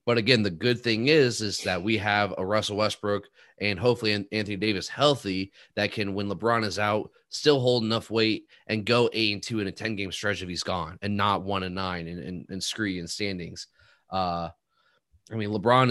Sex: male